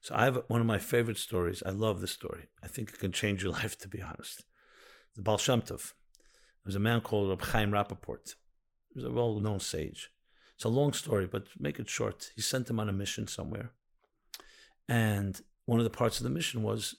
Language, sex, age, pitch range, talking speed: English, male, 50-69, 100-120 Hz, 215 wpm